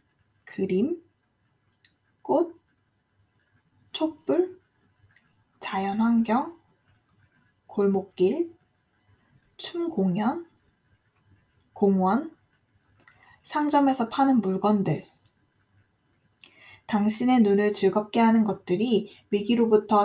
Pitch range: 185-265 Hz